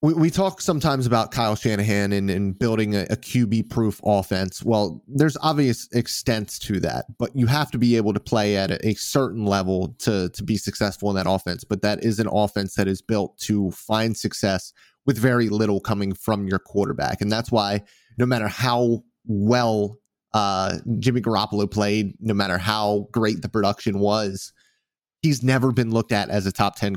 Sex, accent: male, American